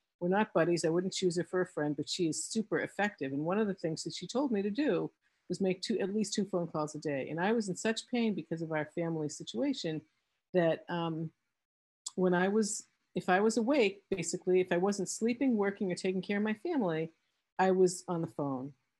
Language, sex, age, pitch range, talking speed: English, female, 50-69, 160-200 Hz, 230 wpm